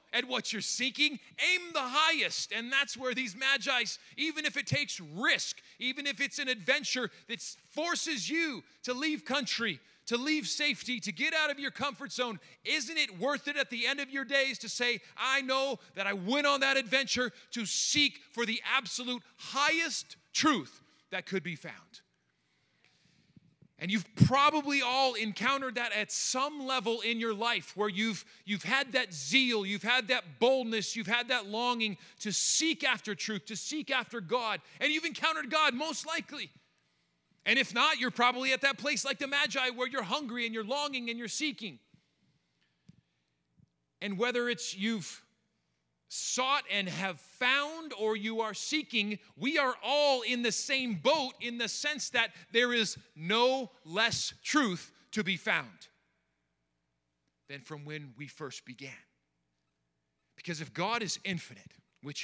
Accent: American